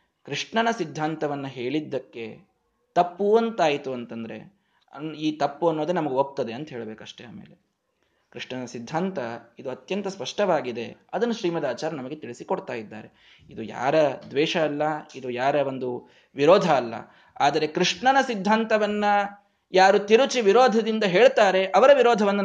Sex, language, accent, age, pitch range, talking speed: male, Kannada, native, 20-39, 135-195 Hz, 115 wpm